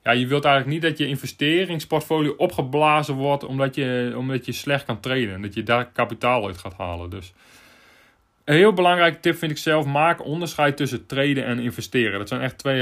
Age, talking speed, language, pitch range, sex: 30-49, 200 wpm, Dutch, 125-150 Hz, male